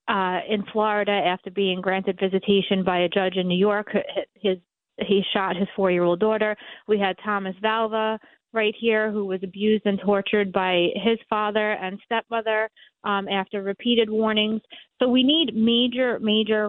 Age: 30-49